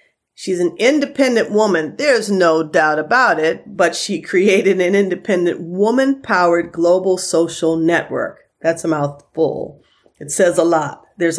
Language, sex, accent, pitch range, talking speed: English, female, American, 155-185 Hz, 135 wpm